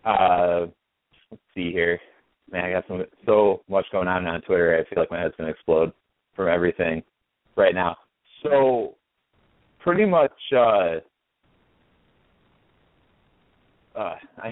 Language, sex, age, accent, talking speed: English, male, 30-49, American, 130 wpm